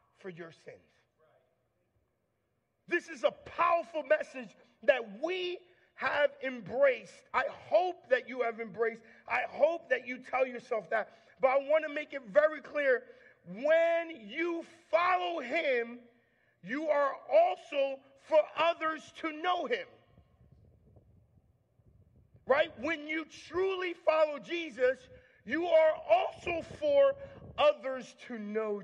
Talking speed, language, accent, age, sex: 120 wpm, English, American, 40-59, male